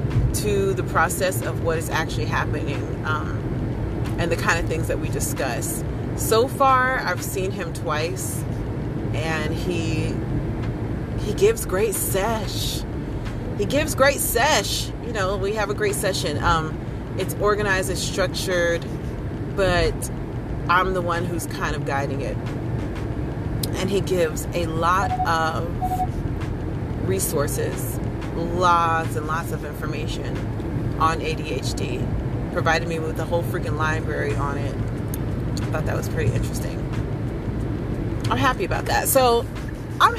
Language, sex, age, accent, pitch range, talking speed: English, female, 30-49, American, 115-155 Hz, 135 wpm